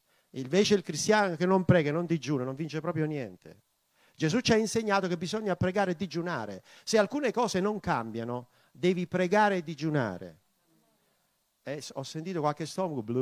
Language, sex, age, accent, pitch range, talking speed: Italian, male, 50-69, native, 155-210 Hz, 165 wpm